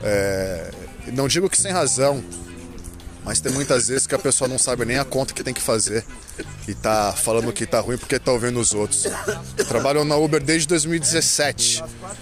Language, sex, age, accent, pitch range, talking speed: Portuguese, male, 20-39, Brazilian, 105-135 Hz, 190 wpm